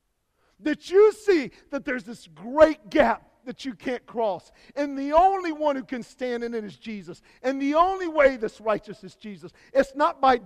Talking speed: 195 wpm